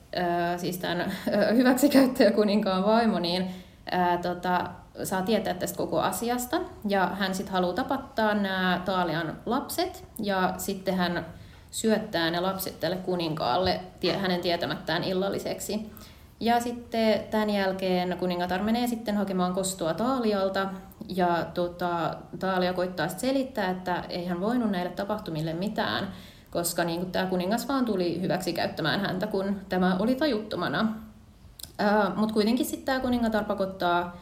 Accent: native